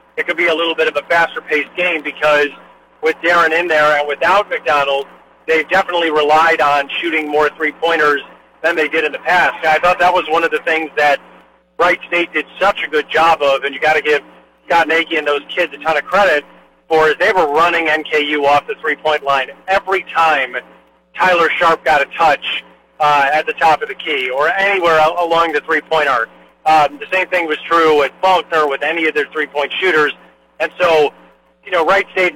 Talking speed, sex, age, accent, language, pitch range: 210 wpm, male, 40-59, American, English, 150-170 Hz